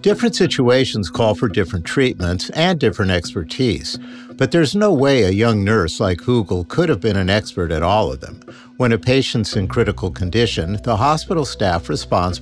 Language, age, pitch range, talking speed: English, 50-69, 95-125 Hz, 180 wpm